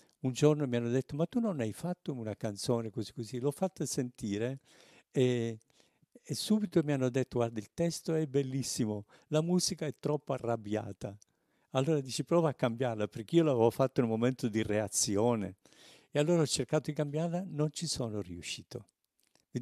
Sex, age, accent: male, 50-69, native